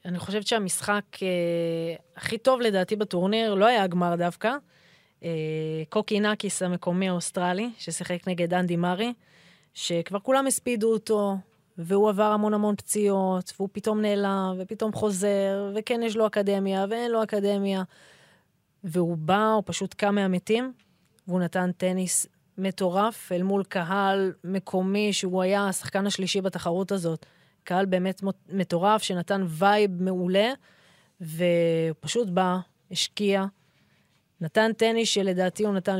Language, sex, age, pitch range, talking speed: Hebrew, female, 20-39, 175-205 Hz, 125 wpm